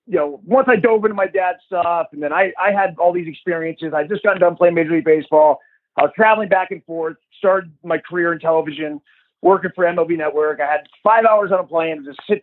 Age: 30-49